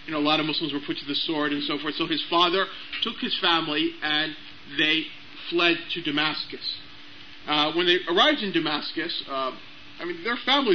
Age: 40-59